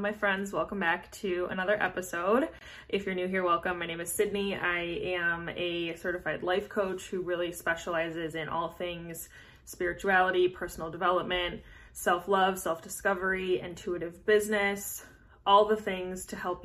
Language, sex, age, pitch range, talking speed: English, female, 20-39, 170-195 Hz, 150 wpm